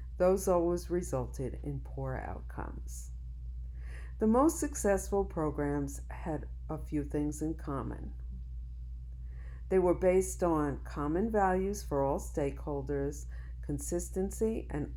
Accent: American